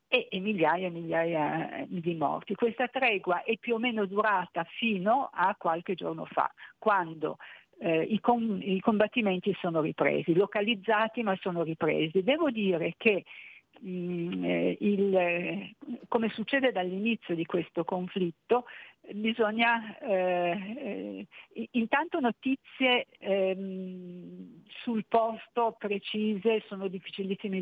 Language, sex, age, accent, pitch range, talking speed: Italian, female, 50-69, native, 175-220 Hz, 105 wpm